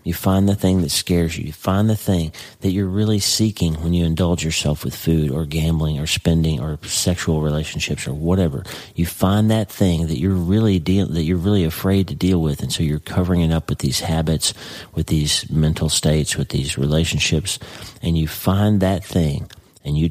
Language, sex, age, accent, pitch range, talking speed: English, male, 40-59, American, 80-95 Hz, 205 wpm